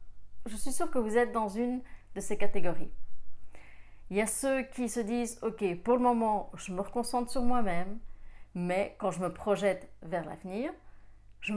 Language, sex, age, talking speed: French, female, 30-49, 180 wpm